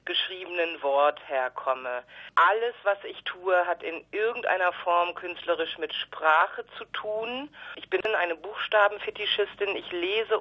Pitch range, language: 165-220 Hz, German